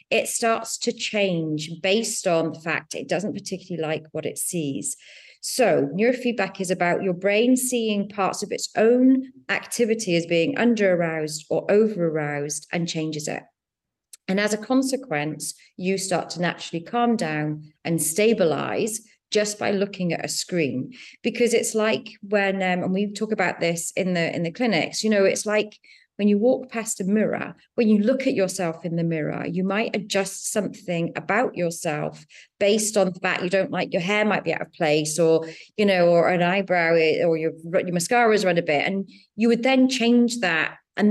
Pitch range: 165-220 Hz